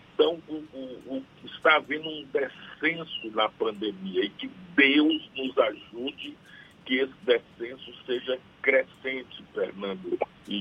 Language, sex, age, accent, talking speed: Portuguese, male, 60-79, Brazilian, 125 wpm